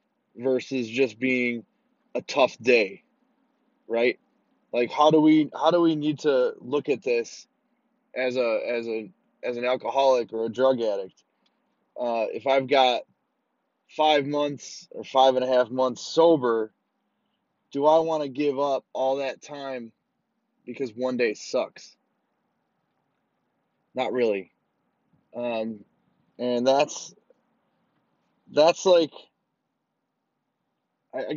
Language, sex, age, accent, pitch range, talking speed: English, male, 20-39, American, 125-165 Hz, 120 wpm